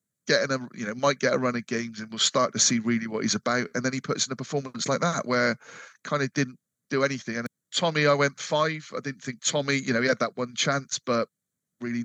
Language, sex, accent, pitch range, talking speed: English, male, British, 110-135 Hz, 260 wpm